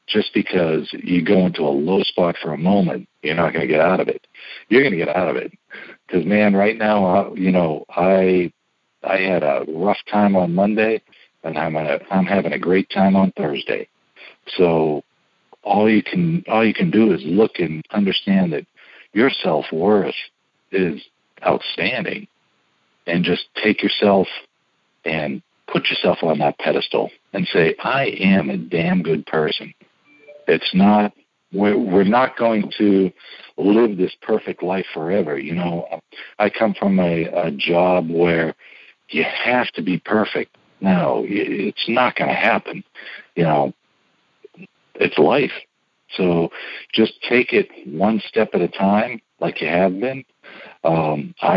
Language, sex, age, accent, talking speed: English, male, 60-79, American, 155 wpm